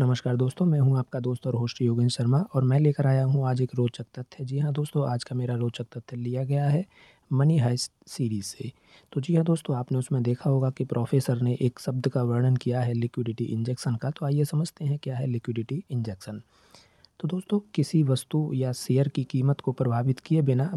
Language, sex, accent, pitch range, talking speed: Hindi, male, native, 125-150 Hz, 215 wpm